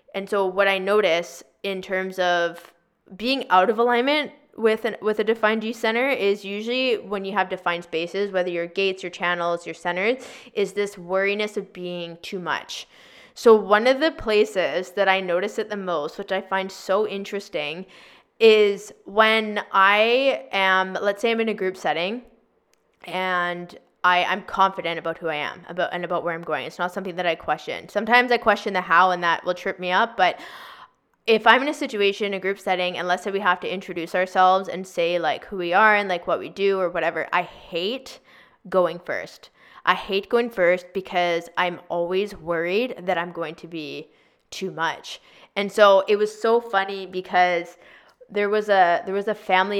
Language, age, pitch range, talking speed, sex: English, 20-39, 175-205 Hz, 195 wpm, female